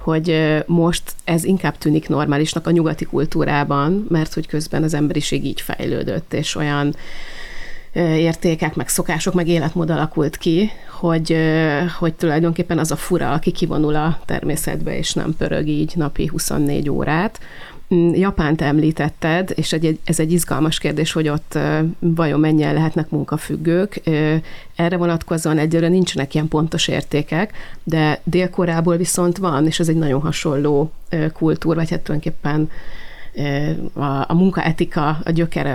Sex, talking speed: female, 135 wpm